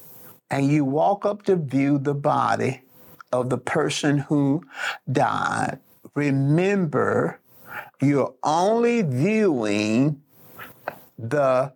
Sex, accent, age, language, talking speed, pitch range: male, American, 50-69, English, 90 wpm, 125-175 Hz